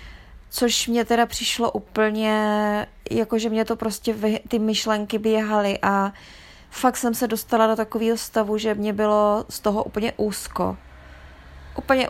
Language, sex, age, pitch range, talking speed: Czech, female, 20-39, 190-220 Hz, 150 wpm